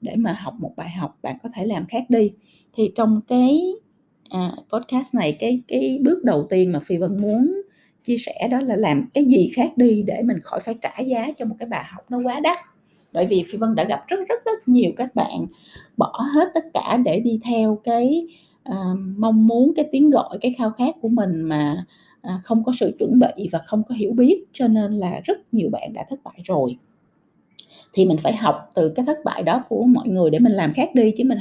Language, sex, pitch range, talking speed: Vietnamese, female, 190-255 Hz, 235 wpm